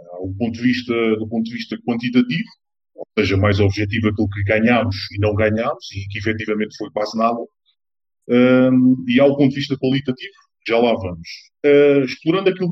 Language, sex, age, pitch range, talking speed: Portuguese, male, 20-39, 110-165 Hz, 190 wpm